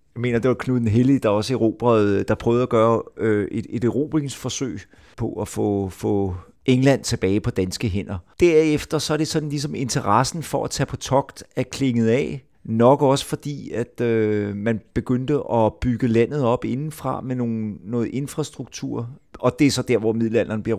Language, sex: Danish, male